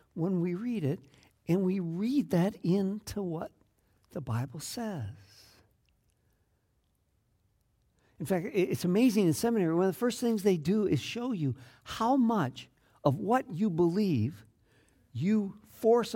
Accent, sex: American, male